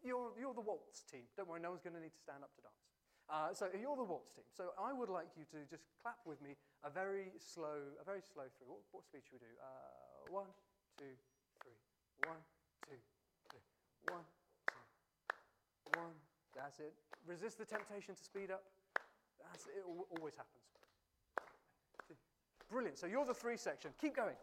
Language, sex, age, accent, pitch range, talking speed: English, male, 30-49, British, 160-235 Hz, 190 wpm